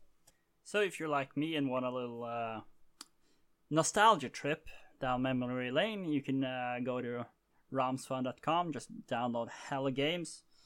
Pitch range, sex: 125-160 Hz, male